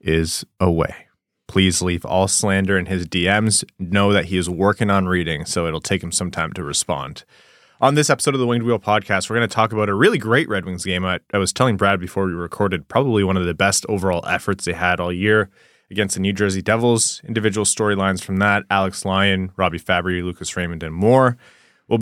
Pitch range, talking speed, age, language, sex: 90-110 Hz, 220 wpm, 20-39, English, male